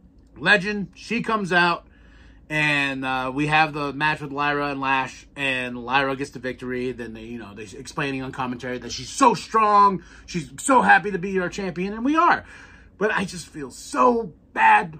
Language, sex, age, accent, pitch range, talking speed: English, male, 30-49, American, 135-195 Hz, 190 wpm